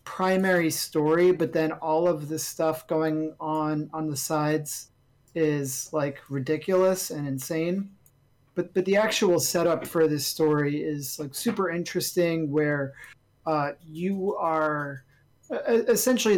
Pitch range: 150-180 Hz